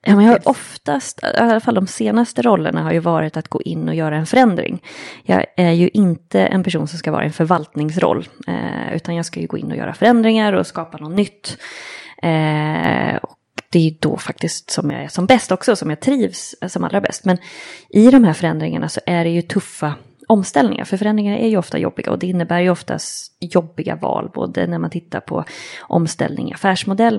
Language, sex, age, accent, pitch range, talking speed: Swedish, female, 20-39, native, 160-210 Hz, 205 wpm